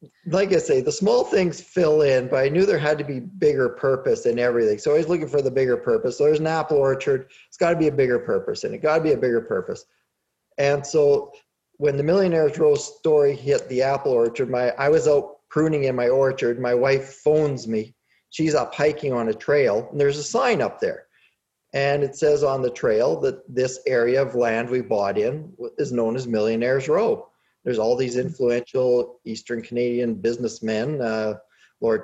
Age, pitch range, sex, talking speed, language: 40-59, 125-185 Hz, male, 200 wpm, English